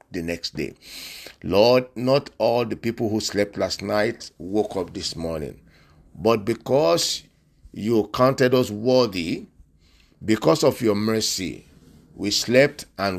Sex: male